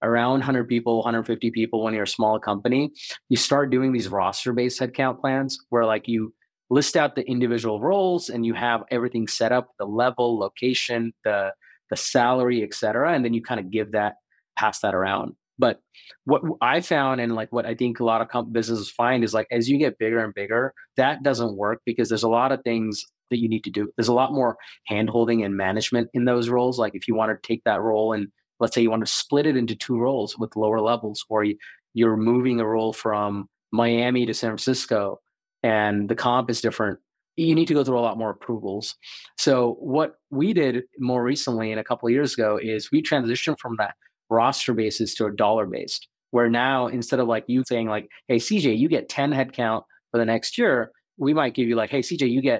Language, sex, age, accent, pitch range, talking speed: English, male, 30-49, American, 110-125 Hz, 220 wpm